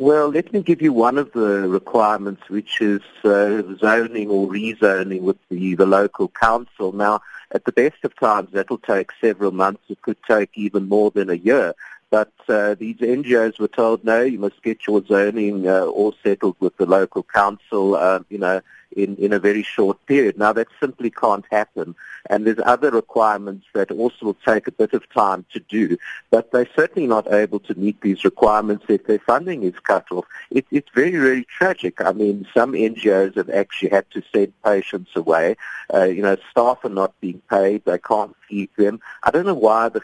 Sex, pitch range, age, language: male, 100-115 Hz, 50-69, English